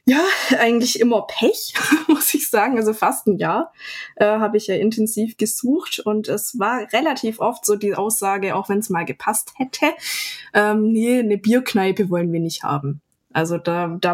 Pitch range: 185-235 Hz